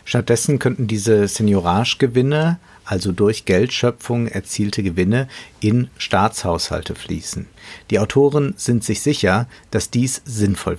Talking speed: 110 wpm